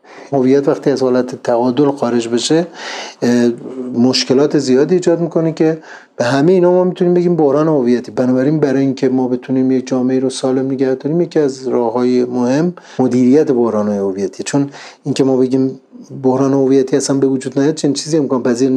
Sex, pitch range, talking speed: male, 120-140 Hz, 170 wpm